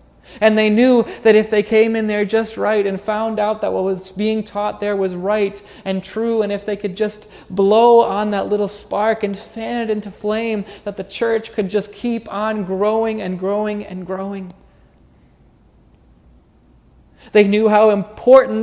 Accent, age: American, 30-49